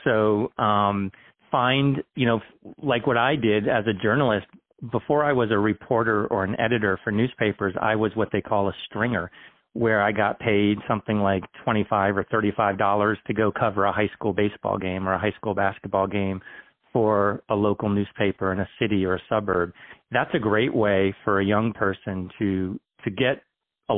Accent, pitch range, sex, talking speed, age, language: American, 100-115 Hz, male, 195 wpm, 40-59, English